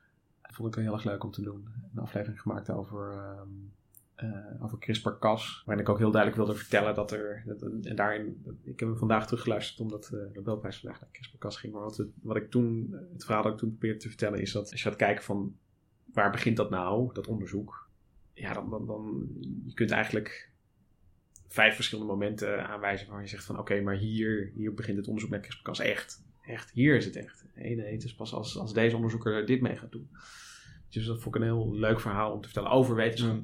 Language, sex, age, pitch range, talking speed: English, male, 20-39, 100-115 Hz, 220 wpm